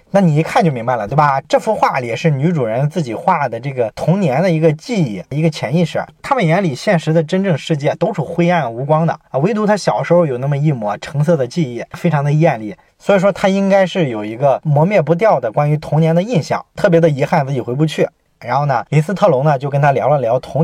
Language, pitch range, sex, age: Chinese, 140-175 Hz, male, 20-39